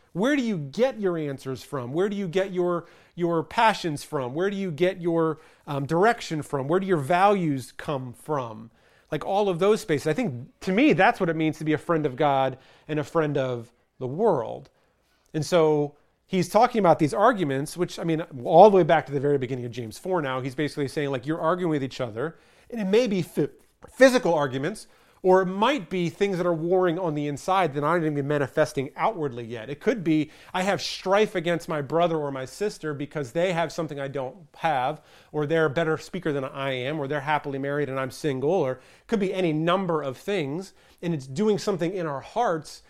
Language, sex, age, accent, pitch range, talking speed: English, male, 40-59, American, 140-185 Hz, 220 wpm